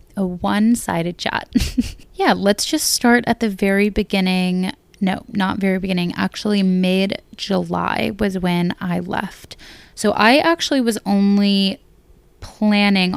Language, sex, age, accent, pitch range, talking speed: English, female, 20-39, American, 175-205 Hz, 125 wpm